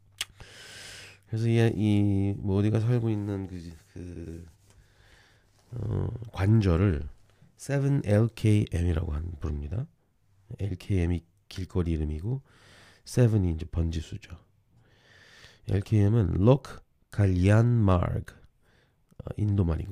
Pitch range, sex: 95-115 Hz, male